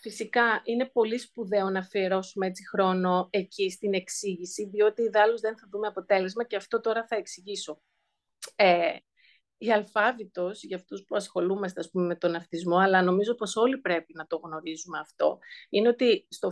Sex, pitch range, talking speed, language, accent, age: female, 185-240 Hz, 165 wpm, Greek, native, 30-49